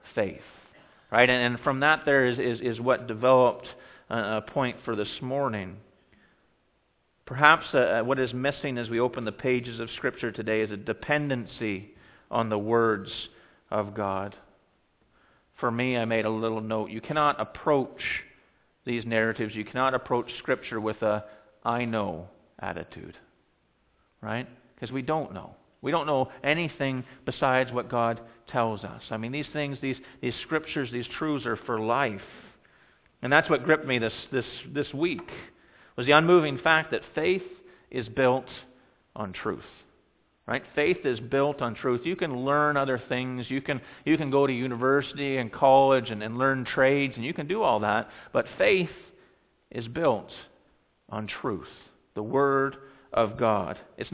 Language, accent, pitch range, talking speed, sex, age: English, American, 115-140 Hz, 160 wpm, male, 40-59